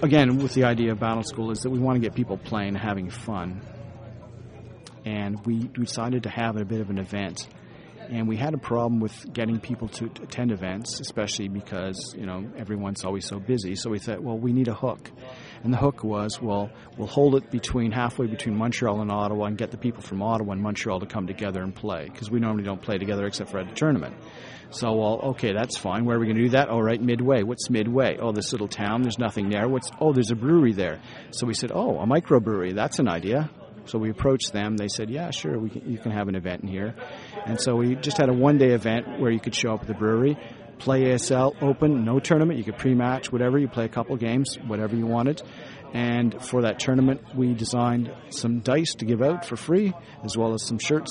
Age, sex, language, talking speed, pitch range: 40-59, male, English, 235 wpm, 105-125 Hz